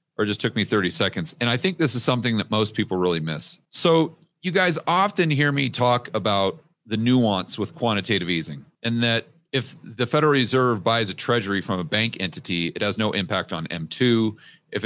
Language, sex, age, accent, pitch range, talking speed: English, male, 40-59, American, 95-125 Hz, 200 wpm